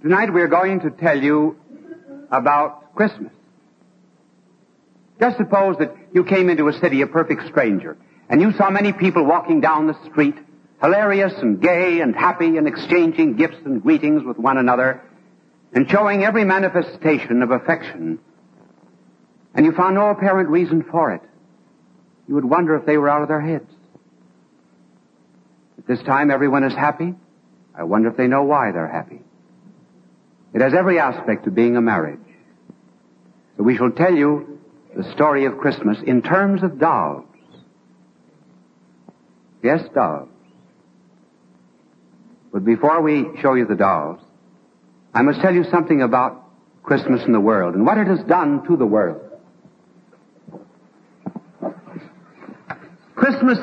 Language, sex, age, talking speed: English, male, 60-79, 145 wpm